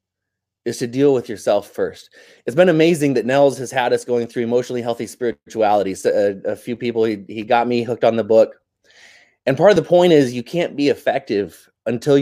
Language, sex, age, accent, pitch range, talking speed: English, male, 30-49, American, 115-155 Hz, 205 wpm